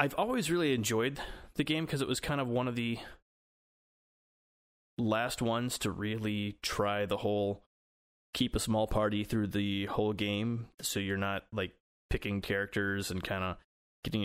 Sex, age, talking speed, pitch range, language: male, 30-49, 165 wpm, 95-115 Hz, English